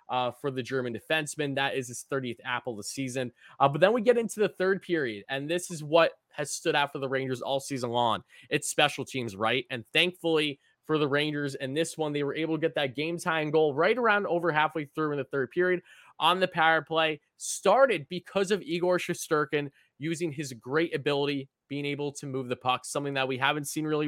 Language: English